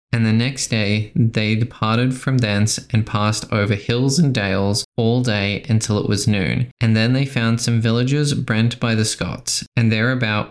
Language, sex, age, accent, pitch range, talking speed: English, male, 20-39, Australian, 105-120 Hz, 185 wpm